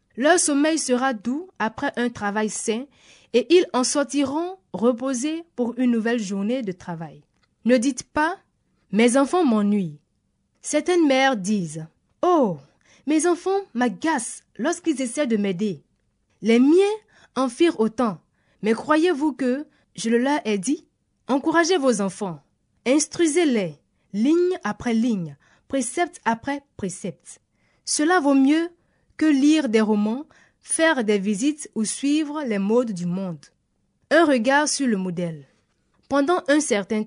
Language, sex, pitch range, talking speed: French, female, 210-300 Hz, 135 wpm